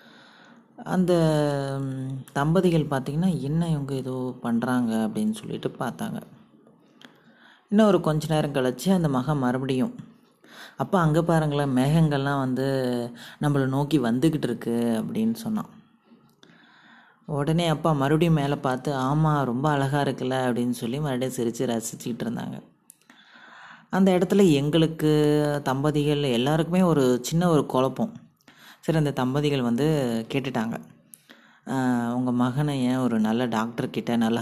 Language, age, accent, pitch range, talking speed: Tamil, 30-49, native, 125-160 Hz, 110 wpm